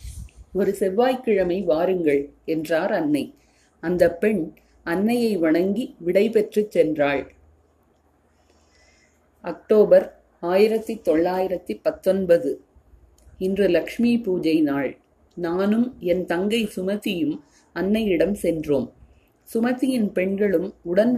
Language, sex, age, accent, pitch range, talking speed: Tamil, female, 30-49, native, 160-225 Hz, 70 wpm